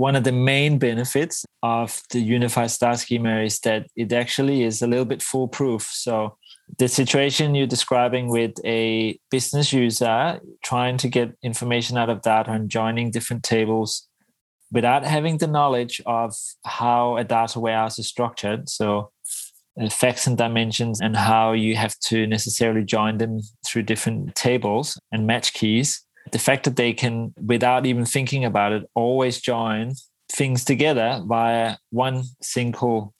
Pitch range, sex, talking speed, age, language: 110-125 Hz, male, 155 wpm, 20-39, English